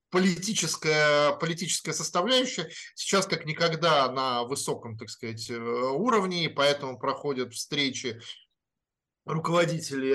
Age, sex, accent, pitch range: 20-39, male, native, 135-160 Hz